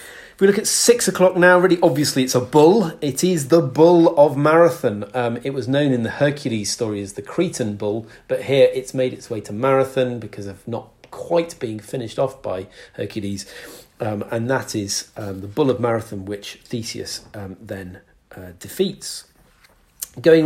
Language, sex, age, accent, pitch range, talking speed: English, male, 40-59, British, 115-155 Hz, 180 wpm